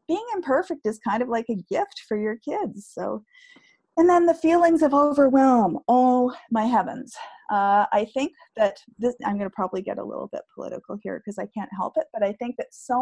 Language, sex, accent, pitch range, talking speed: English, female, American, 195-260 Hz, 210 wpm